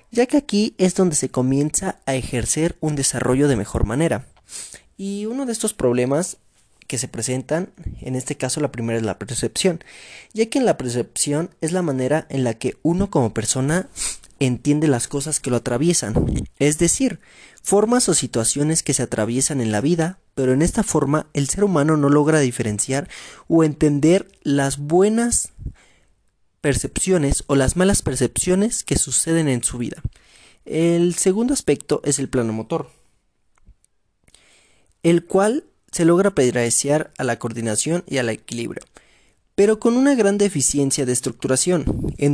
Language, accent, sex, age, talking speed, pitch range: Spanish, Mexican, male, 30-49, 155 wpm, 130-180 Hz